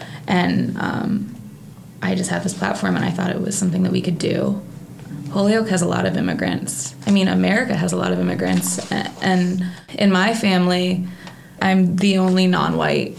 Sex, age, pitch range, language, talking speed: female, 20-39, 175-195 Hz, English, 175 wpm